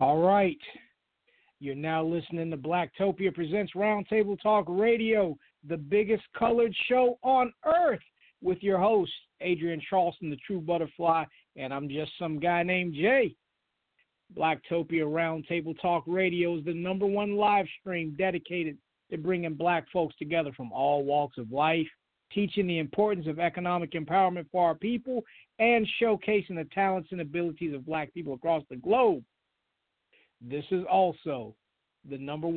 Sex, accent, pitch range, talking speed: male, American, 160-215 Hz, 145 wpm